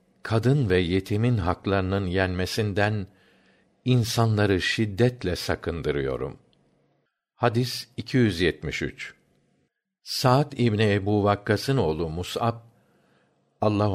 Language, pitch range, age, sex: Turkish, 90-120 Hz, 60-79, male